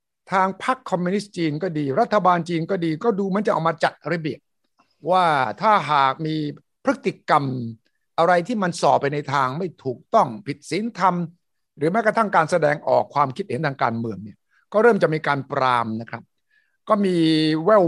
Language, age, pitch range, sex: Thai, 60-79, 150-200 Hz, male